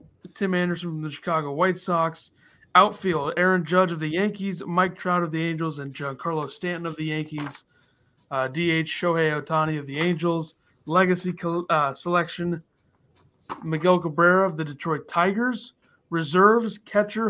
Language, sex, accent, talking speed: English, male, American, 145 wpm